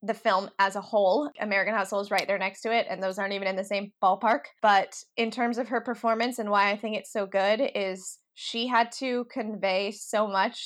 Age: 20-39